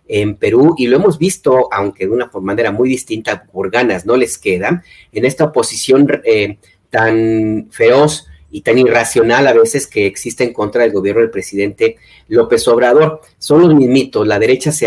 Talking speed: 180 wpm